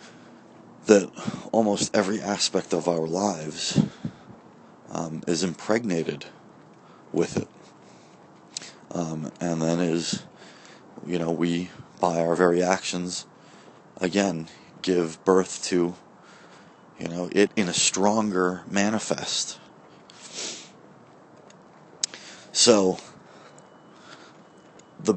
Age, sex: 30-49, male